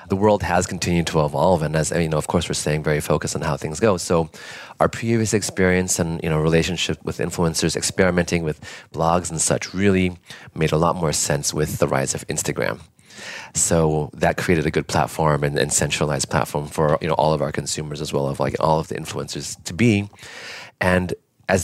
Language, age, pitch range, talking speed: English, 30-49, 80-95 Hz, 210 wpm